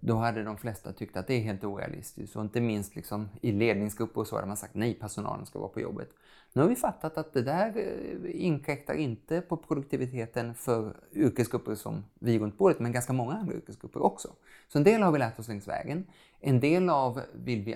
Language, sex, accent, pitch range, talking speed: Swedish, male, Norwegian, 110-145 Hz, 215 wpm